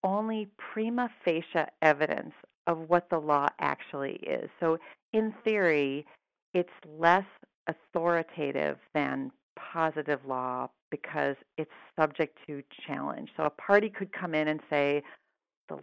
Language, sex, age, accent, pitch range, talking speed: English, female, 40-59, American, 145-175 Hz, 125 wpm